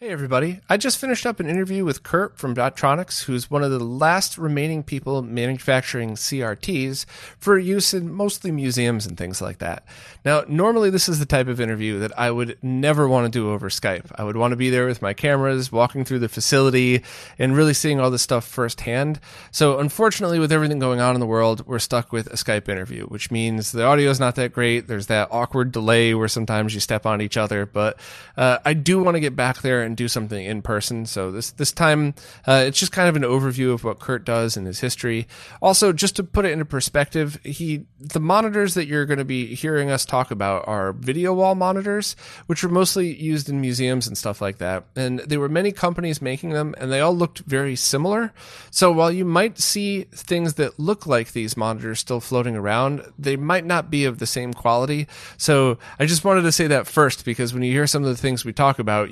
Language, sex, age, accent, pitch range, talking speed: English, male, 30-49, American, 120-155 Hz, 225 wpm